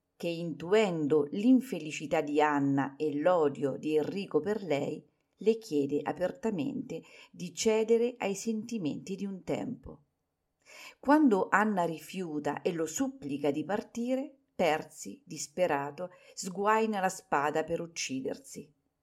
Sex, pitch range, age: female, 150-220 Hz, 50-69